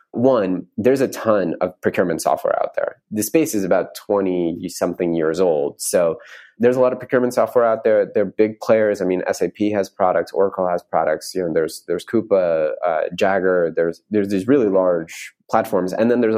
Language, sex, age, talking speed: English, male, 30-49, 190 wpm